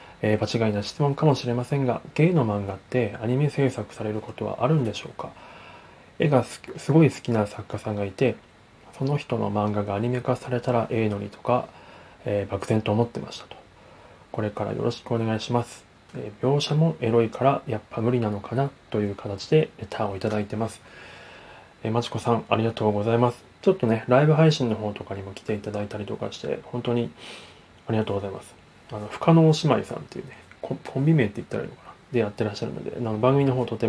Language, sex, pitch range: Japanese, male, 105-125 Hz